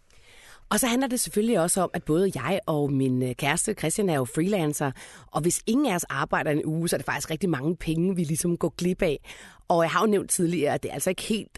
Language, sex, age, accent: Danish, female, 30-49, native